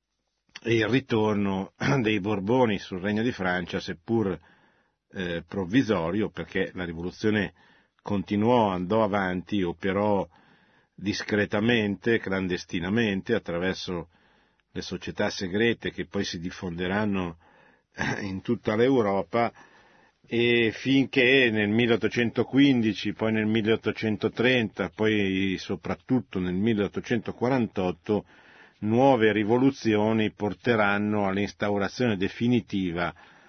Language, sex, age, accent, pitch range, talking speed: Italian, male, 50-69, native, 95-115 Hz, 85 wpm